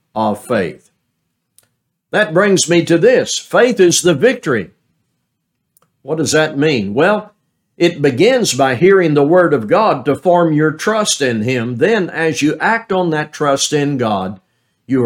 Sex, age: male, 60-79